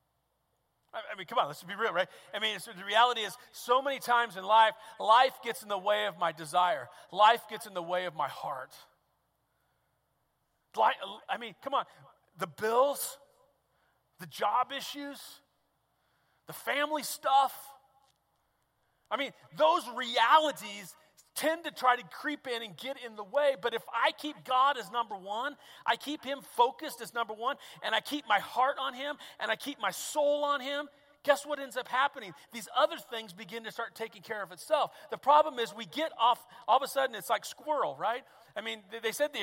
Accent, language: American, English